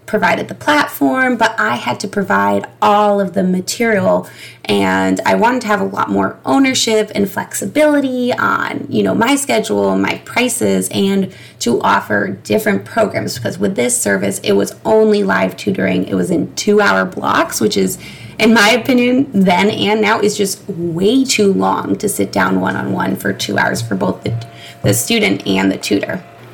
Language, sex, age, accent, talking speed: English, female, 20-39, American, 175 wpm